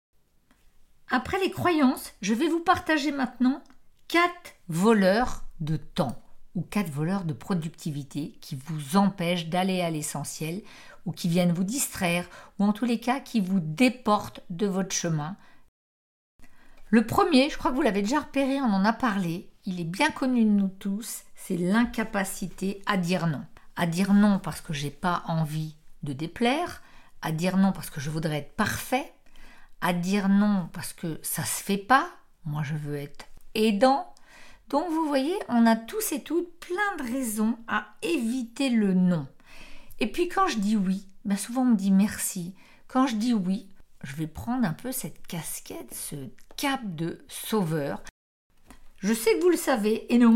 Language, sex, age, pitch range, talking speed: French, female, 50-69, 175-245 Hz, 175 wpm